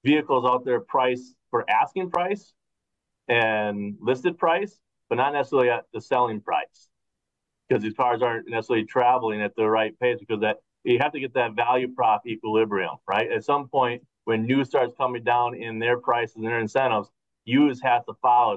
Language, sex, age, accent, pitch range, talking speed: English, male, 30-49, American, 110-130 Hz, 180 wpm